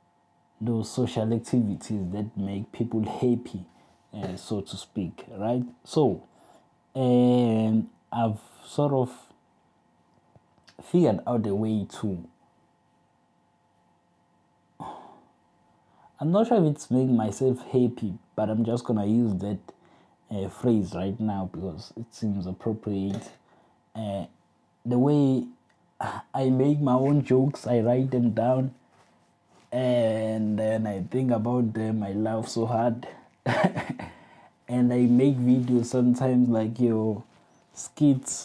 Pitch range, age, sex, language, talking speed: 105-125 Hz, 20-39, male, English, 115 wpm